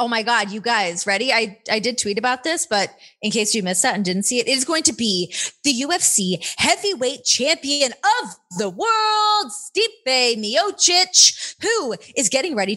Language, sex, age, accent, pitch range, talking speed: English, female, 20-39, American, 190-255 Hz, 190 wpm